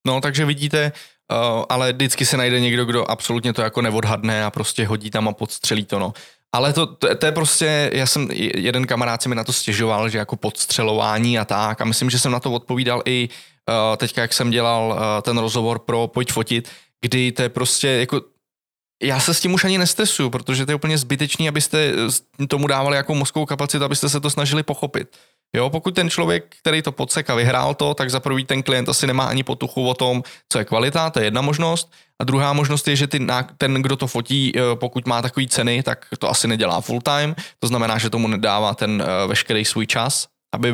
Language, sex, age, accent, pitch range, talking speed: Czech, male, 20-39, native, 115-140 Hz, 205 wpm